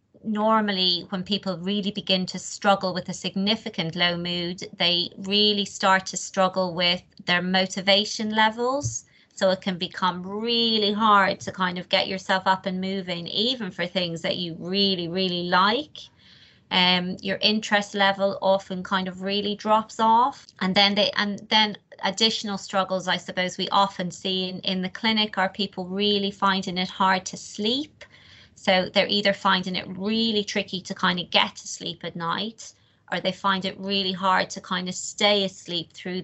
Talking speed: 170 wpm